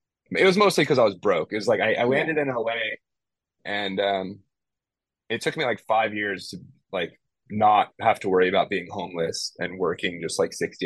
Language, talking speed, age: English, 205 wpm, 20-39